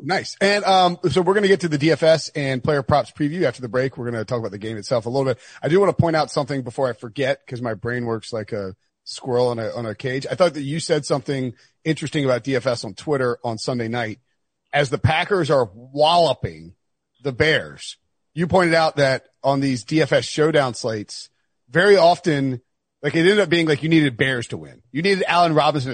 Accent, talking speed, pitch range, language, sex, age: American, 225 wpm, 130-165 Hz, English, male, 40-59